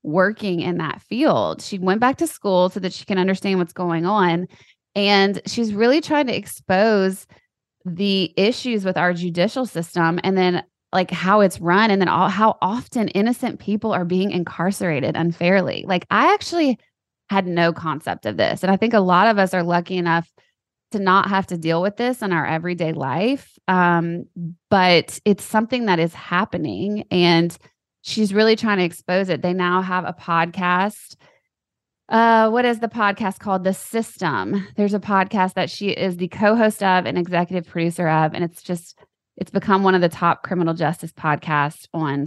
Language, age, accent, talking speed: English, 20-39, American, 180 wpm